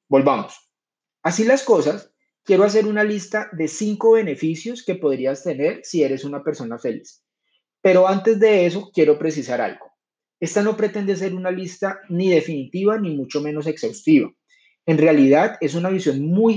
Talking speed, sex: 160 wpm, male